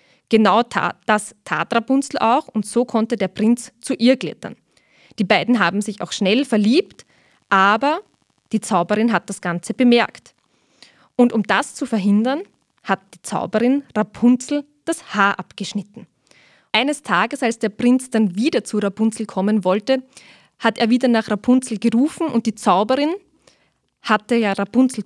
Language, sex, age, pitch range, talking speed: German, female, 20-39, 205-255 Hz, 150 wpm